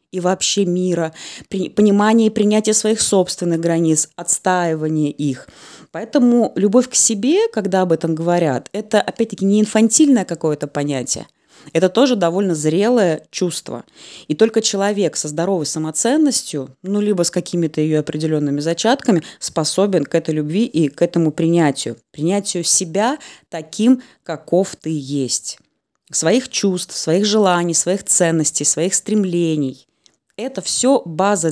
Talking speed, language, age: 130 wpm, Russian, 20-39